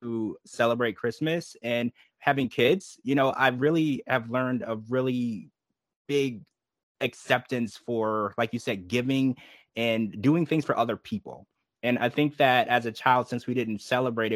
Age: 20-39